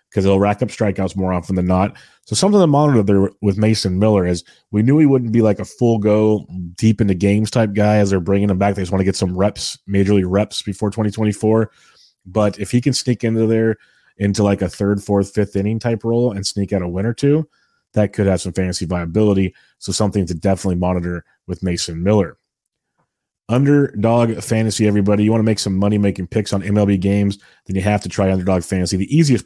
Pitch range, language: 95-115 Hz, English